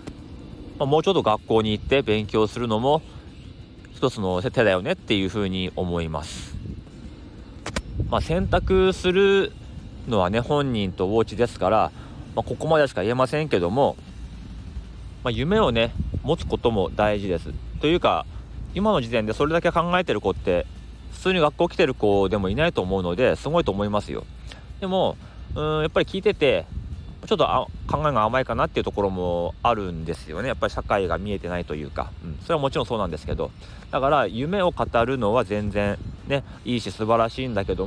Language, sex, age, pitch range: Japanese, male, 30-49, 95-130 Hz